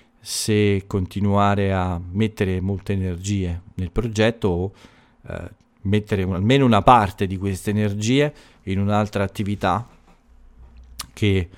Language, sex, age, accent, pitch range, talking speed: Italian, male, 40-59, native, 95-115 Hz, 110 wpm